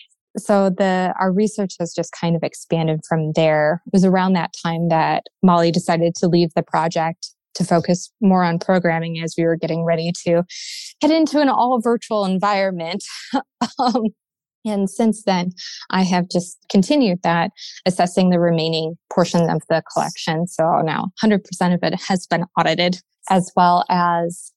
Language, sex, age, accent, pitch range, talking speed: English, female, 20-39, American, 170-200 Hz, 160 wpm